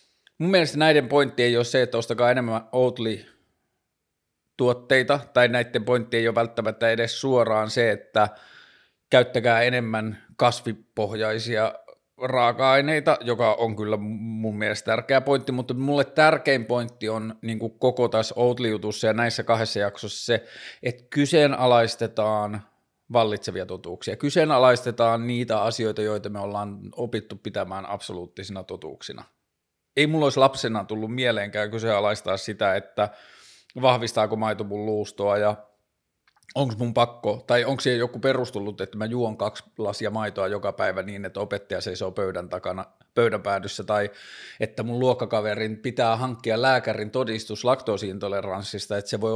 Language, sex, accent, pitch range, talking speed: Finnish, male, native, 105-125 Hz, 135 wpm